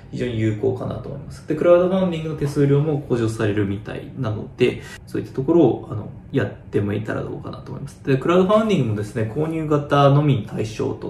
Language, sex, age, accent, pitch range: Japanese, male, 20-39, native, 110-145 Hz